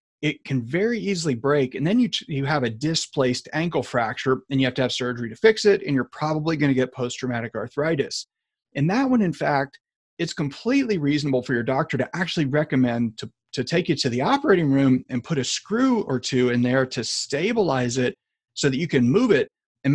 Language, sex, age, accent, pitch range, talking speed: English, male, 30-49, American, 125-160 Hz, 215 wpm